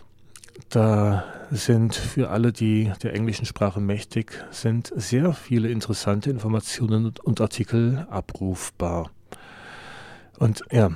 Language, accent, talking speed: German, German, 105 wpm